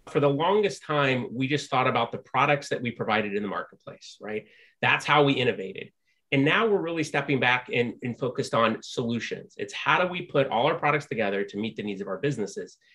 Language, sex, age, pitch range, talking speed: English, male, 30-49, 115-155 Hz, 225 wpm